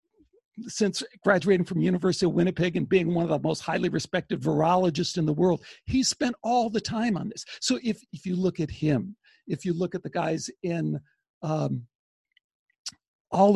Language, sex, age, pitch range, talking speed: English, male, 60-79, 160-205 Hz, 180 wpm